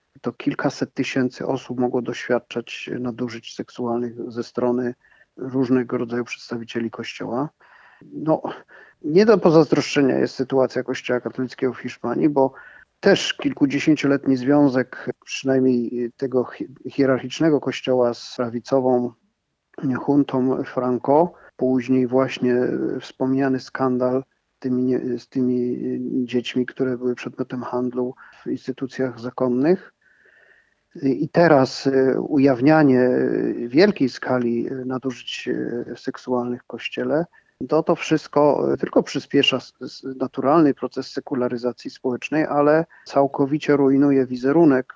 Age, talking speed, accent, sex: 40-59, 95 wpm, native, male